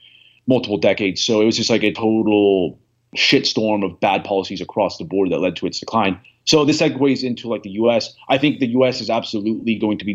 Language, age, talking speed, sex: English, 30-49, 220 wpm, male